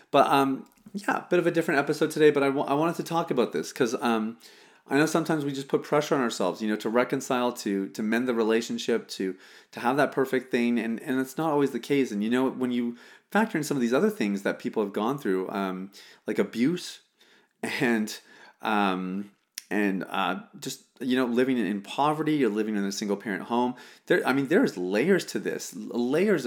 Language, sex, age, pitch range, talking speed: English, male, 30-49, 105-140 Hz, 220 wpm